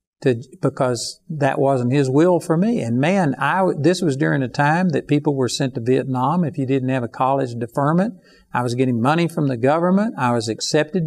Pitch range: 130-160 Hz